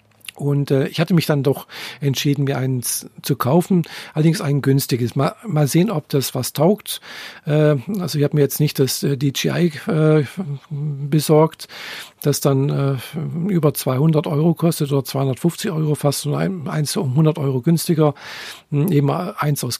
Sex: male